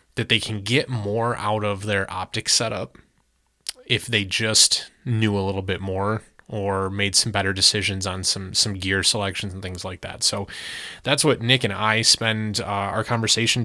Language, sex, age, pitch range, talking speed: English, male, 20-39, 100-115 Hz, 185 wpm